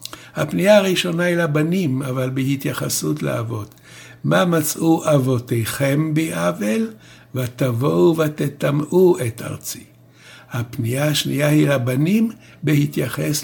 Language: Hebrew